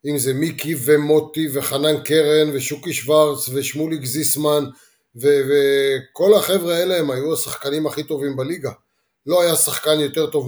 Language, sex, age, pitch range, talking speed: Hebrew, male, 30-49, 140-165 Hz, 145 wpm